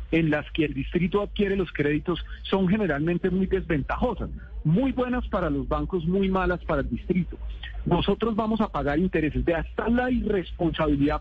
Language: Spanish